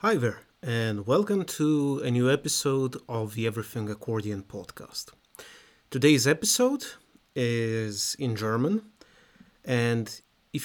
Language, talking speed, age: English, 115 wpm, 30-49